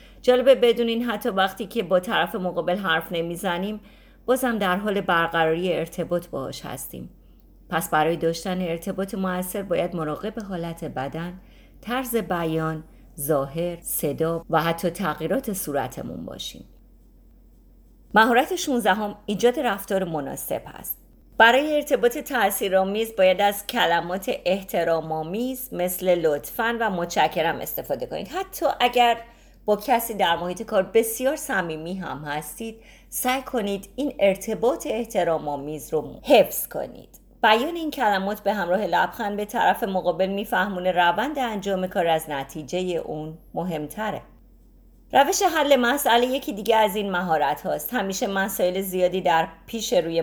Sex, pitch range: female, 170-230 Hz